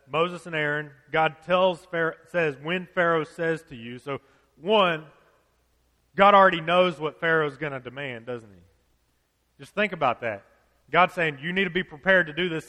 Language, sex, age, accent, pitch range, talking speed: English, male, 30-49, American, 130-170 Hz, 180 wpm